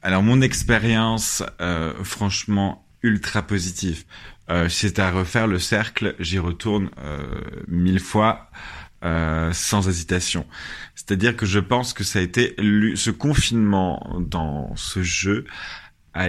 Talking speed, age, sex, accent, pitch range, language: 140 wpm, 30-49, male, French, 90-110 Hz, French